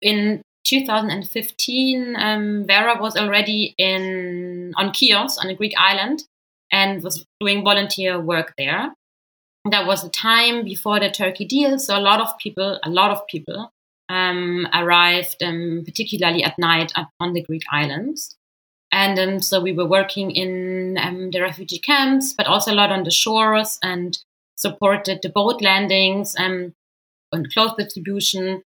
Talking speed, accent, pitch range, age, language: 155 wpm, German, 180-205 Hz, 20-39, English